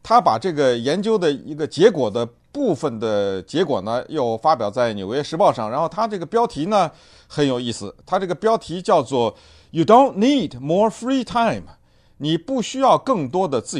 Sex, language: male, Chinese